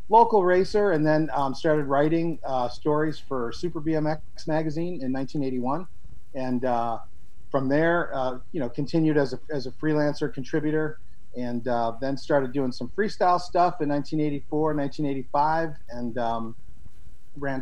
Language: English